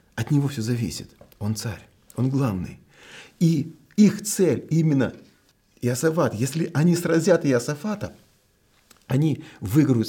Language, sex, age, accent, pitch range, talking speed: Russian, male, 40-59, native, 95-150 Hz, 115 wpm